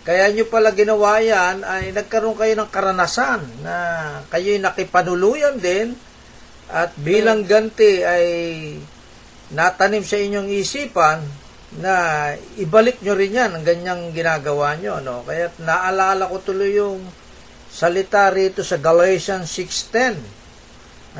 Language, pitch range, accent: Filipino, 165-210 Hz, native